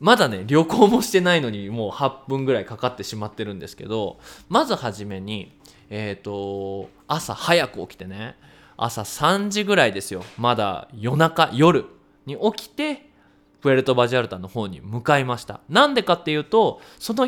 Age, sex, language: 20-39, male, Japanese